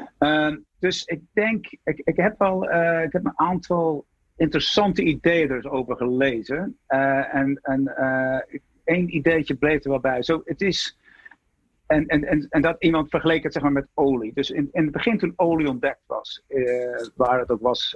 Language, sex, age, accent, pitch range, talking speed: Dutch, male, 50-69, Dutch, 130-155 Hz, 185 wpm